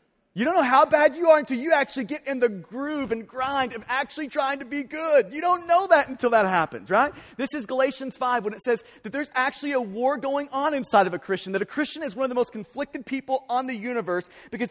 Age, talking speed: 30-49, 255 wpm